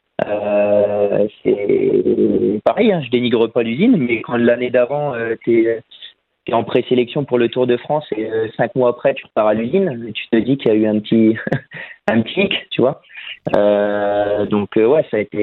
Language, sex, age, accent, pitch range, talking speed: French, male, 30-49, French, 110-125 Hz, 205 wpm